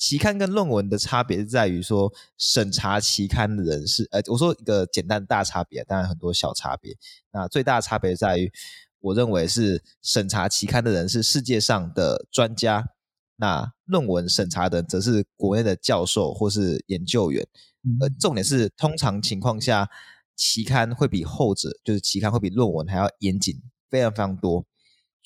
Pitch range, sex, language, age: 100-125 Hz, male, Chinese, 20-39